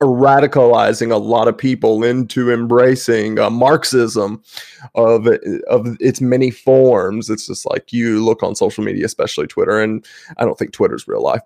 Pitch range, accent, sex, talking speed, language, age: 115-130 Hz, American, male, 160 wpm, English, 20-39